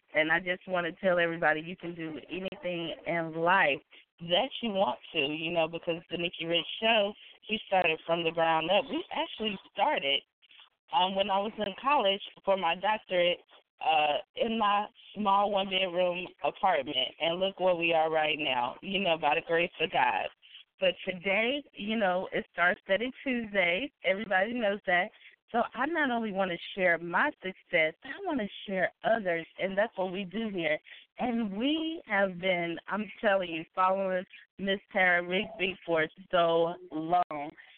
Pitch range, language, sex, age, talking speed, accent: 170-215 Hz, English, female, 20-39, 170 wpm, American